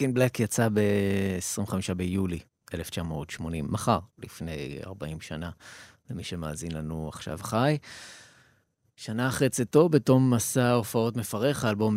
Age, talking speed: 30-49, 120 wpm